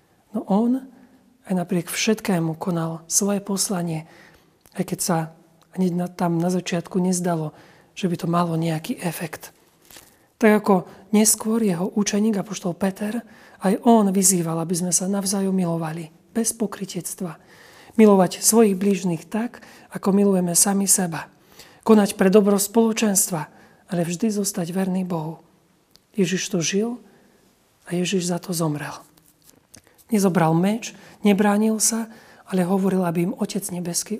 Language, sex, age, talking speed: Slovak, male, 40-59, 130 wpm